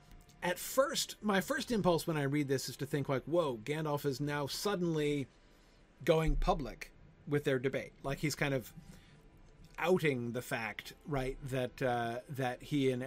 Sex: male